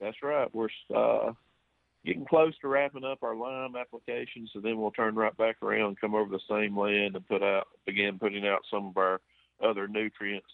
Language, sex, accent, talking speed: English, male, American, 200 wpm